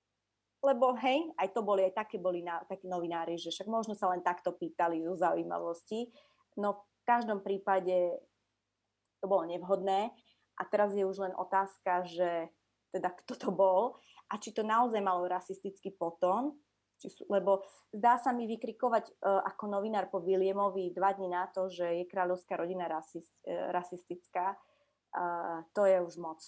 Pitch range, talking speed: 175-200 Hz, 165 wpm